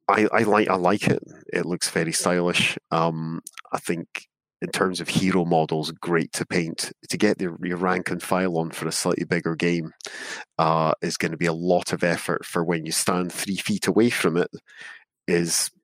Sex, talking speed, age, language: male, 195 wpm, 30-49, English